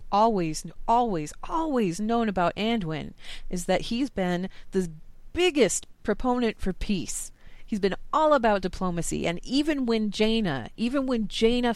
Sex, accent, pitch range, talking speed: female, American, 170-220 Hz, 140 wpm